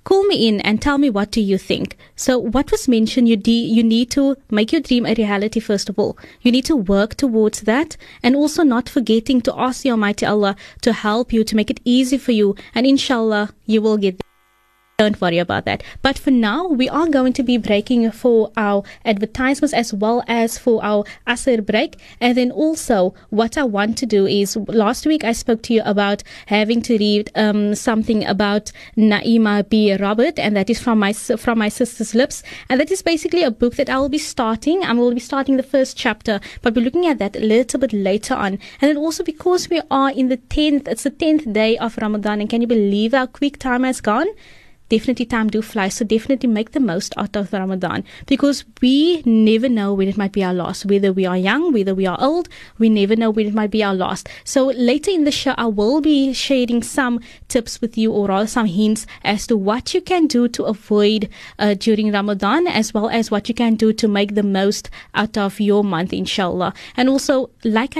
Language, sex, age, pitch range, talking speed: English, female, 20-39, 210-265 Hz, 220 wpm